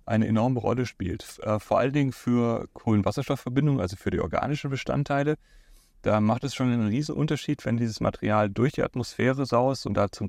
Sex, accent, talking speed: male, German, 175 wpm